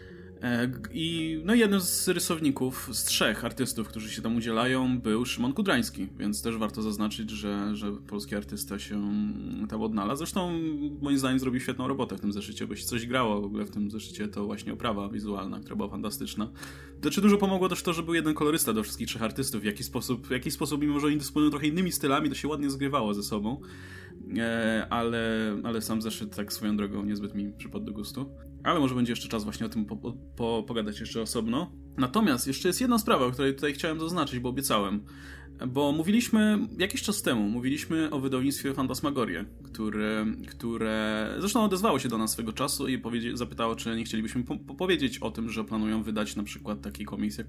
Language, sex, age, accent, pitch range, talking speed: Polish, male, 20-39, native, 105-140 Hz, 195 wpm